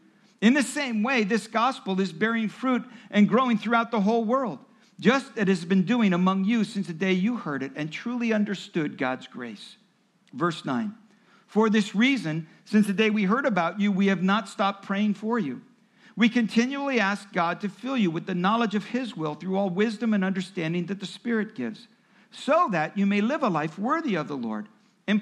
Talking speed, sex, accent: 205 wpm, male, American